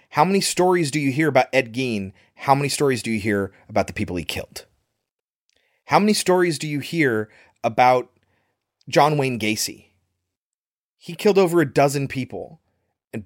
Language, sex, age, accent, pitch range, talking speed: English, male, 30-49, American, 105-150 Hz, 165 wpm